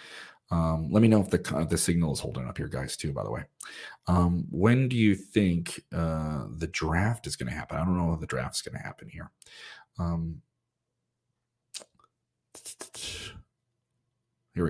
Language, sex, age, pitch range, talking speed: English, male, 30-49, 80-95 Hz, 175 wpm